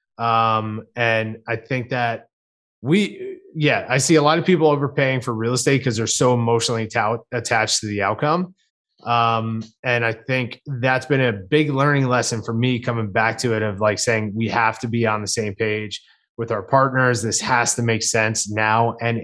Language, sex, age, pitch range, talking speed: English, male, 20-39, 110-140 Hz, 195 wpm